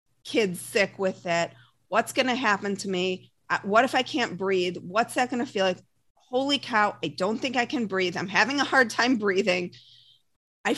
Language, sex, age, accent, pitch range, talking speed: English, female, 40-59, American, 180-255 Hz, 200 wpm